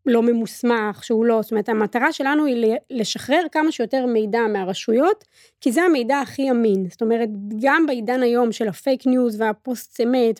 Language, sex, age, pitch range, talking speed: Hebrew, female, 20-39, 225-280 Hz, 165 wpm